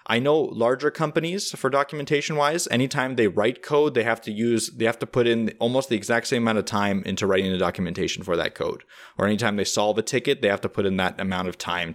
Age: 20-39